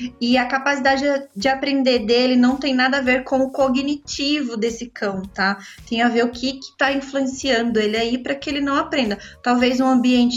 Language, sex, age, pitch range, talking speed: Portuguese, female, 20-39, 240-280 Hz, 205 wpm